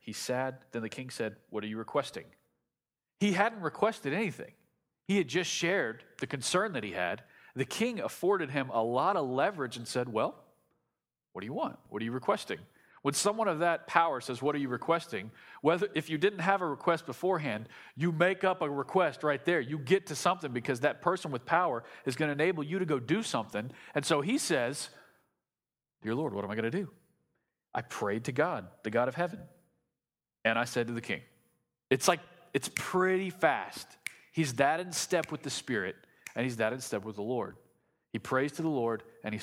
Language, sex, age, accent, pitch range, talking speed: English, male, 40-59, American, 115-165 Hz, 210 wpm